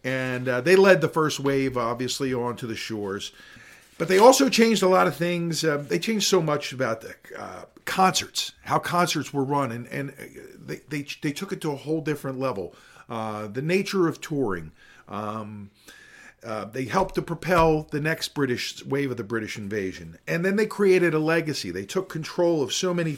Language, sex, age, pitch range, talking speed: English, male, 50-69, 130-170 Hz, 195 wpm